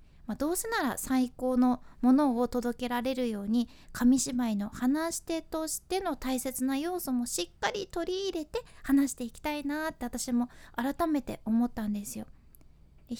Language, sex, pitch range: Japanese, female, 225-305 Hz